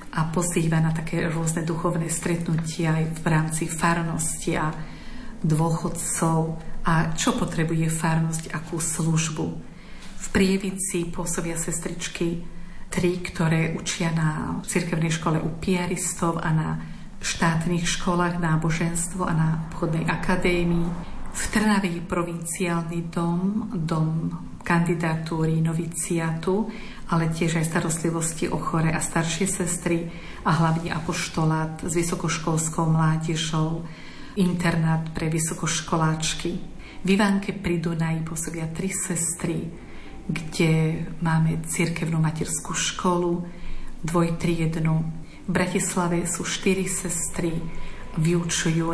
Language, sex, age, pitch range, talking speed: Slovak, female, 50-69, 160-175 Hz, 105 wpm